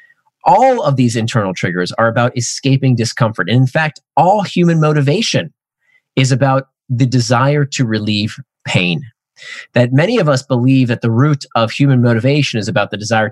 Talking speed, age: 165 wpm, 30-49